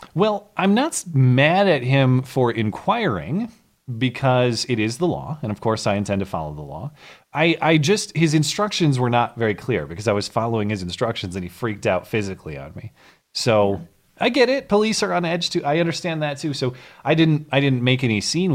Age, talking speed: 30-49, 210 wpm